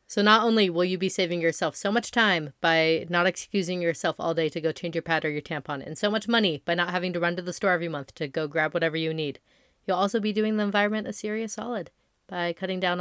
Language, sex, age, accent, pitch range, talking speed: English, female, 30-49, American, 170-220 Hz, 265 wpm